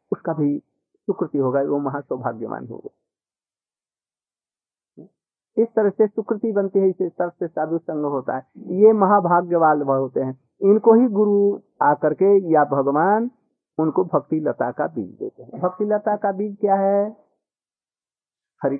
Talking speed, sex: 145 wpm, male